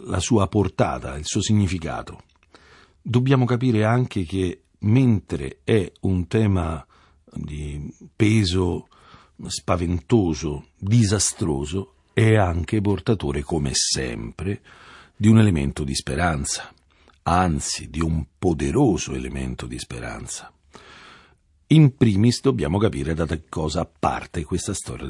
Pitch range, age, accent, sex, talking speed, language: 75-105 Hz, 50-69, native, male, 105 wpm, Italian